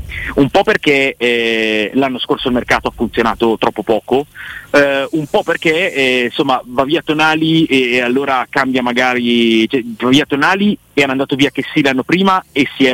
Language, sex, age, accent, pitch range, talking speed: Italian, male, 40-59, native, 120-150 Hz, 190 wpm